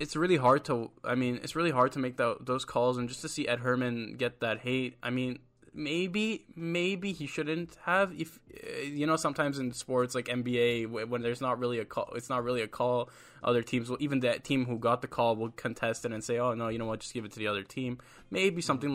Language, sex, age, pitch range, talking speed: English, male, 10-29, 115-125 Hz, 245 wpm